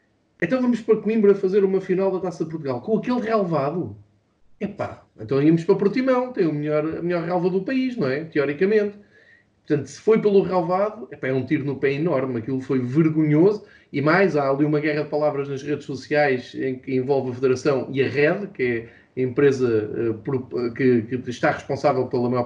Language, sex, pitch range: Portuguese, male, 130-165 Hz